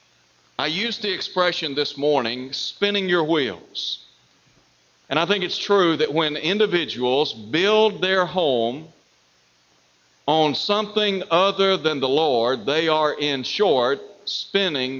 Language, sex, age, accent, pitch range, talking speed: English, male, 60-79, American, 110-175 Hz, 125 wpm